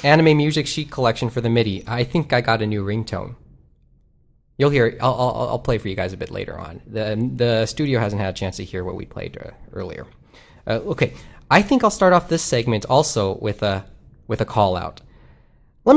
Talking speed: 215 wpm